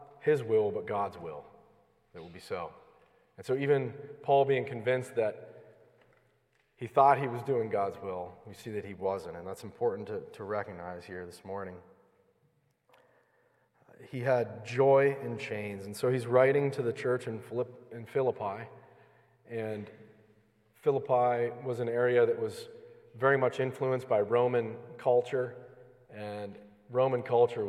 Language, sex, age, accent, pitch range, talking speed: English, male, 40-59, American, 110-135 Hz, 145 wpm